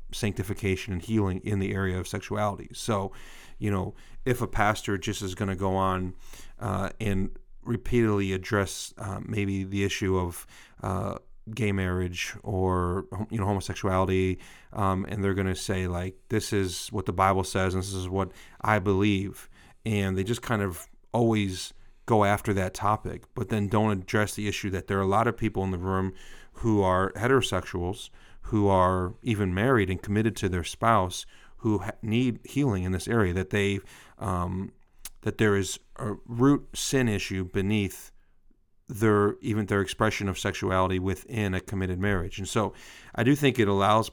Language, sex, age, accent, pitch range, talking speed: English, male, 40-59, American, 95-110 Hz, 175 wpm